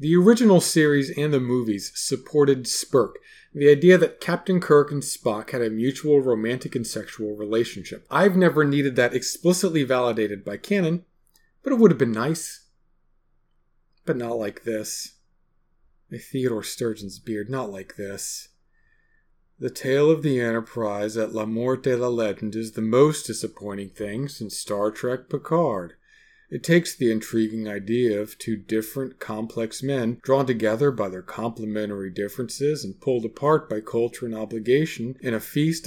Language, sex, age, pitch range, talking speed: English, male, 40-59, 115-155 Hz, 155 wpm